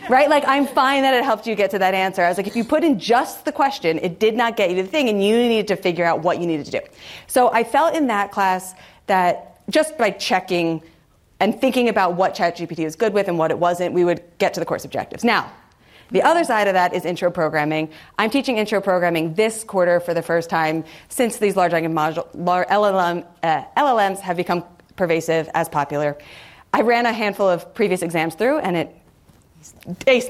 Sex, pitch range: female, 170-225 Hz